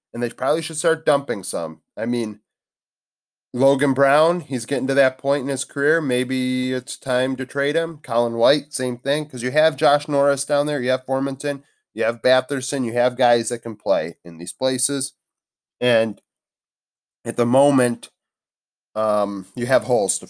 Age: 30-49